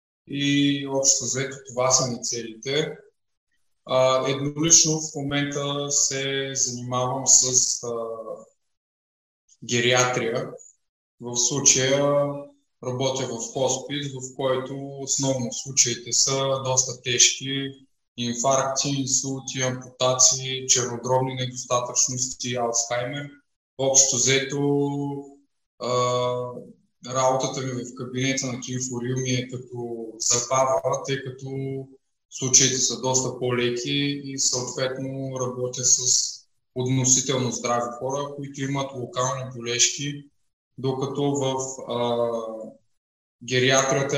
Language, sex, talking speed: Bulgarian, male, 90 wpm